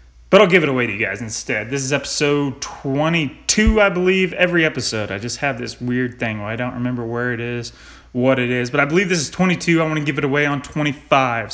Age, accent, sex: 20-39, American, male